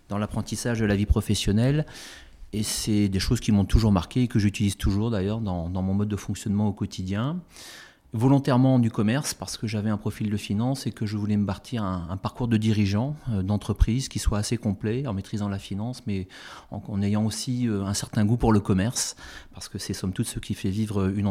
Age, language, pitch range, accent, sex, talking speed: 30-49, French, 100-115 Hz, French, male, 230 wpm